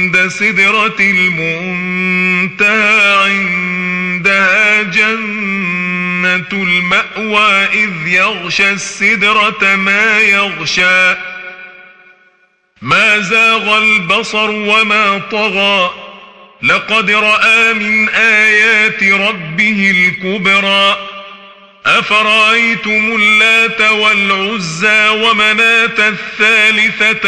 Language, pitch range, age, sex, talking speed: Arabic, 185-215 Hz, 40-59, male, 60 wpm